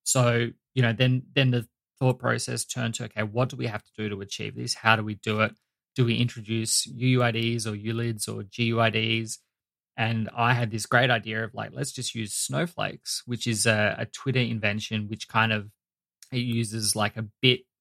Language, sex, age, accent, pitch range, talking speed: English, male, 20-39, Australian, 110-125 Hz, 200 wpm